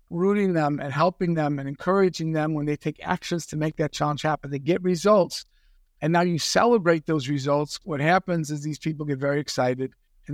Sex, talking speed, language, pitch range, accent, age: male, 205 wpm, English, 155-200 Hz, American, 60-79